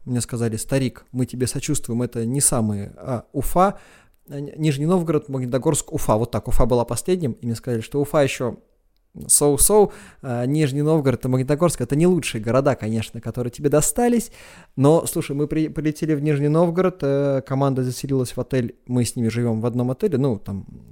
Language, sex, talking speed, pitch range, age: Russian, male, 165 wpm, 120-155 Hz, 20-39